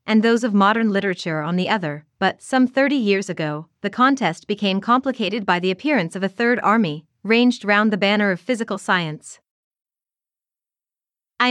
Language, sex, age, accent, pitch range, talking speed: English, female, 30-49, American, 180-245 Hz, 165 wpm